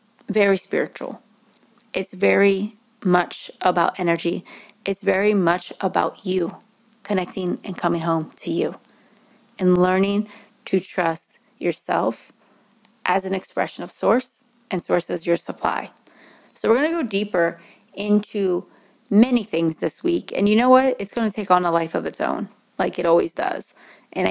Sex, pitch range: female, 185-220 Hz